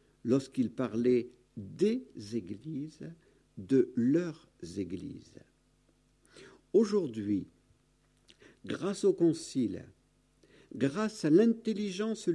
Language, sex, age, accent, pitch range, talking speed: French, male, 50-69, French, 130-200 Hz, 70 wpm